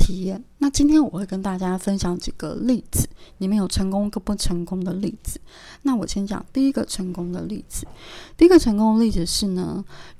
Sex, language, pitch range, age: female, Chinese, 180-210 Hz, 20-39